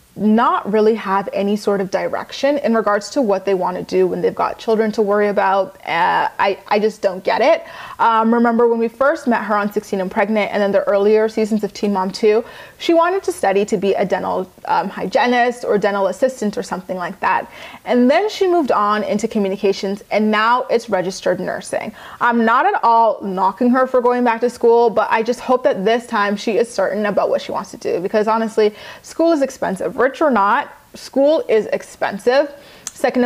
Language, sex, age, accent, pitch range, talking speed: English, female, 20-39, American, 200-245 Hz, 210 wpm